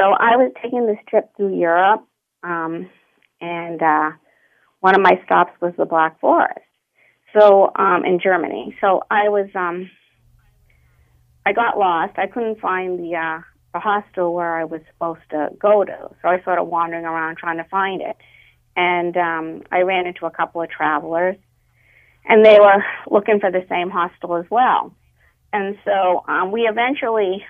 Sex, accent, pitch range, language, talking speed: female, American, 165-195 Hz, English, 170 wpm